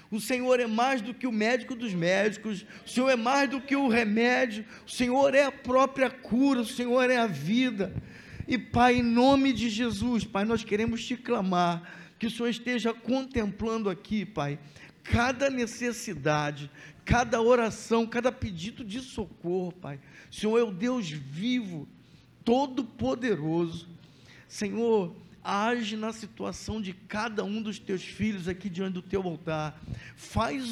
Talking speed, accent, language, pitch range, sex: 155 wpm, Brazilian, Portuguese, 170-235 Hz, male